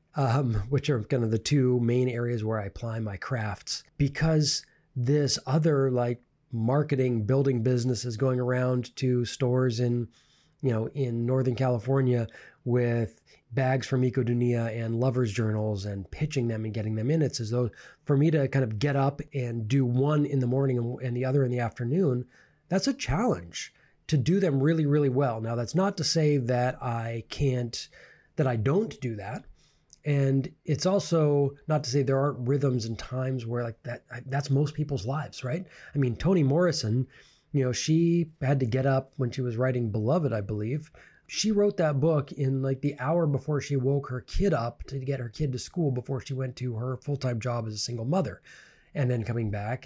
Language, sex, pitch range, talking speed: English, male, 120-145 Hz, 195 wpm